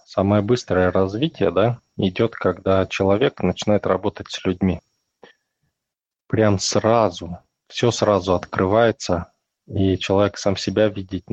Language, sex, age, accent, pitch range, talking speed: Russian, male, 20-39, native, 95-110 Hz, 110 wpm